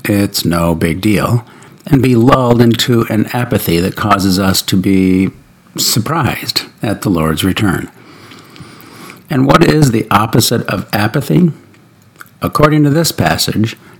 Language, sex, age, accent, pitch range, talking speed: English, male, 60-79, American, 100-135 Hz, 135 wpm